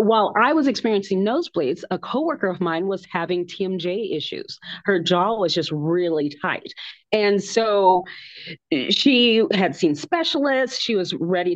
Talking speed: 145 wpm